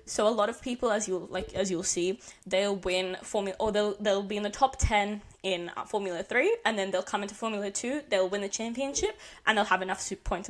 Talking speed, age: 245 wpm, 20-39